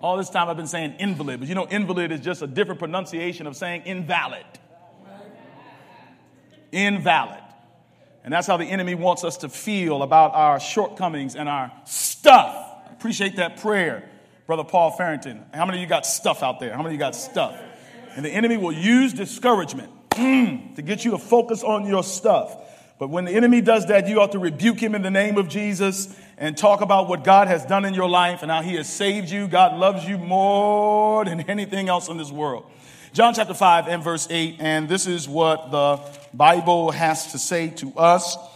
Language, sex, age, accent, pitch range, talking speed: English, male, 40-59, American, 165-205 Hz, 200 wpm